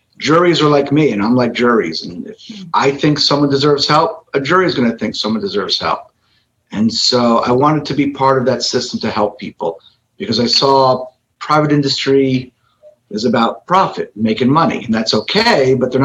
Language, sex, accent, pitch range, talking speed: English, male, American, 115-140 Hz, 195 wpm